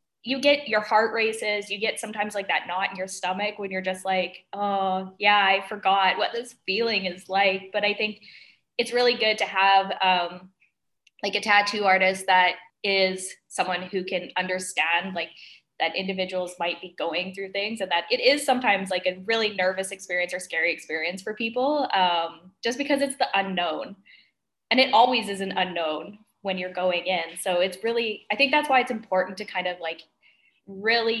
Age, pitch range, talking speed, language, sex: 10-29, 180-210 Hz, 190 wpm, English, female